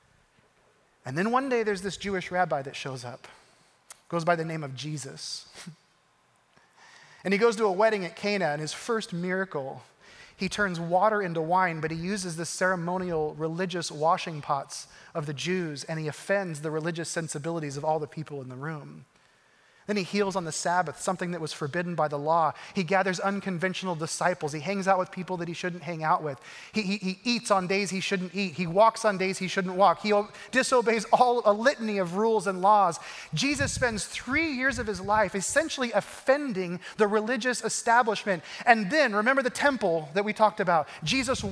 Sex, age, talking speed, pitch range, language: male, 30-49, 190 wpm, 170-220 Hz, English